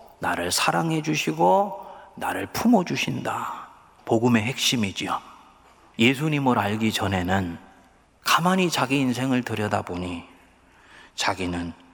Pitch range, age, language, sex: 105-140 Hz, 40-59, Korean, male